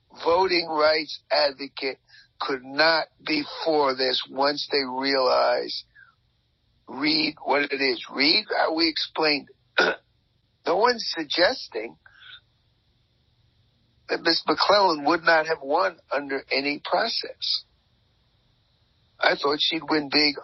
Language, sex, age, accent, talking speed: English, male, 50-69, American, 110 wpm